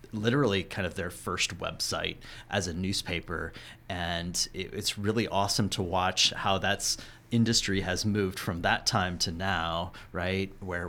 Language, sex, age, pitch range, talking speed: English, male, 30-49, 90-105 Hz, 150 wpm